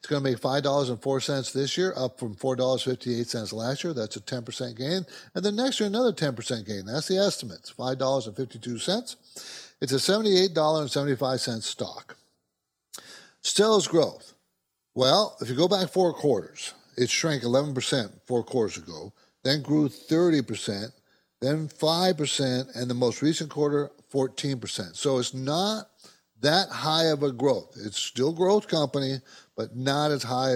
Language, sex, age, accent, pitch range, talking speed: English, male, 50-69, American, 120-160 Hz, 145 wpm